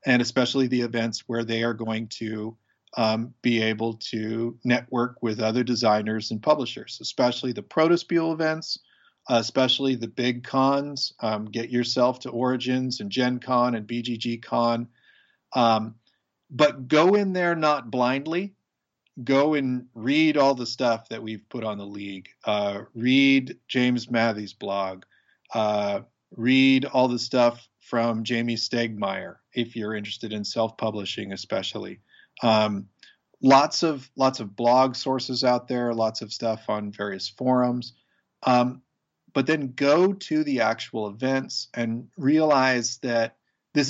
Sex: male